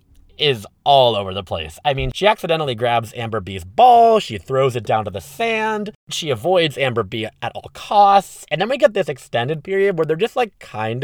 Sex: male